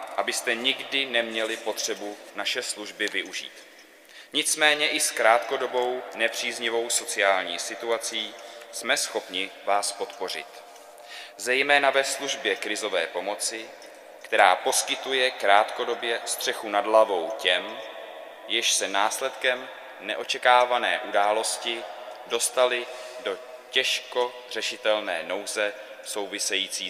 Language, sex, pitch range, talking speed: Czech, male, 110-135 Hz, 90 wpm